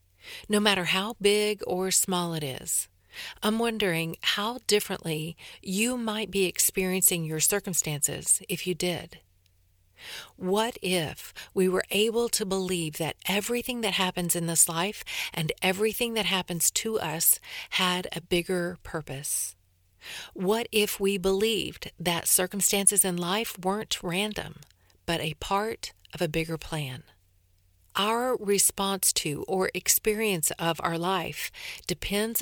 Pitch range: 165-205 Hz